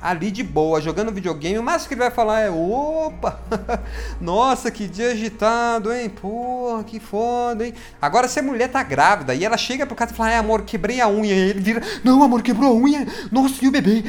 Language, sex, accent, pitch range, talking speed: Portuguese, male, Brazilian, 155-240 Hz, 220 wpm